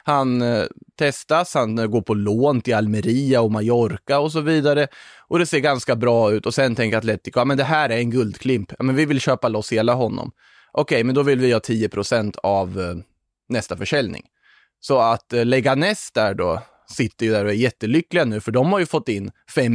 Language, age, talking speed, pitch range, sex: Swedish, 20-39, 220 wpm, 110-140 Hz, male